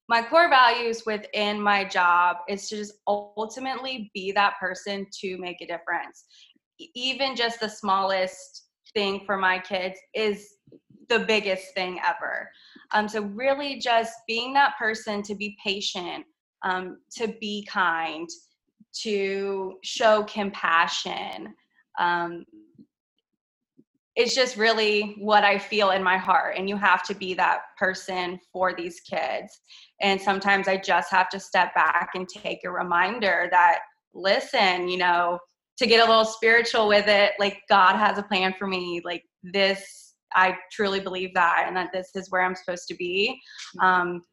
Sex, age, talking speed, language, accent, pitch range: female, 20-39, 155 wpm, English, American, 185-220 Hz